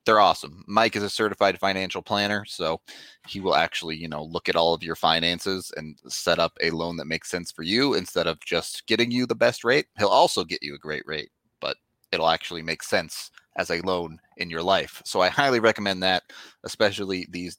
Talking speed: 215 wpm